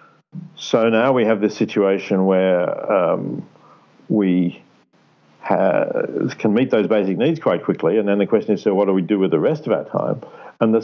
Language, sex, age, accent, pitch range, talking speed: English, male, 50-69, Australian, 90-110 Hz, 190 wpm